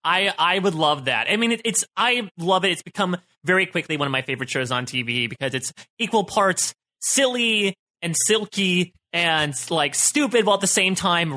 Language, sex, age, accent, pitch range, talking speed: English, male, 20-39, American, 135-205 Hz, 200 wpm